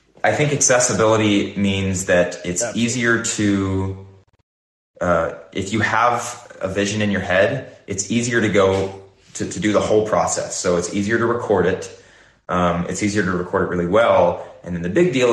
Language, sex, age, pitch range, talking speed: English, male, 20-39, 90-100 Hz, 180 wpm